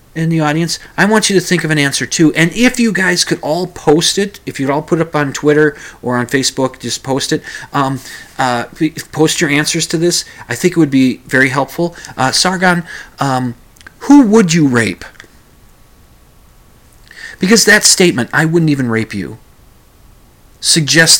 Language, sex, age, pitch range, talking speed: English, male, 30-49, 130-180 Hz, 180 wpm